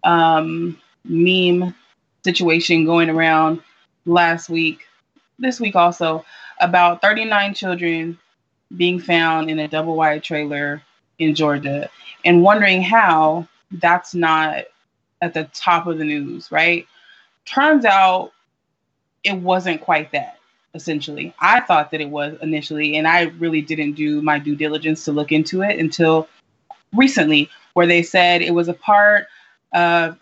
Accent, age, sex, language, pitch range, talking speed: American, 20-39, female, English, 160-185 Hz, 135 wpm